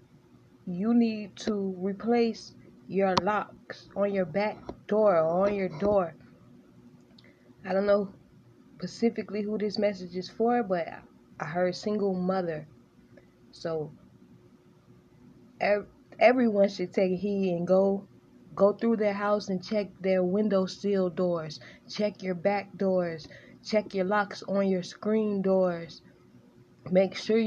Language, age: English, 20-39